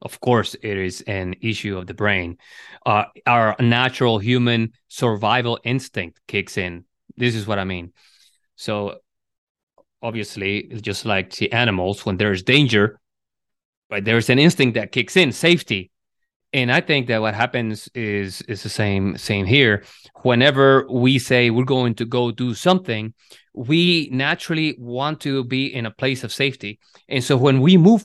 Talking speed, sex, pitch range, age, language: 165 wpm, male, 110-140 Hz, 30-49, English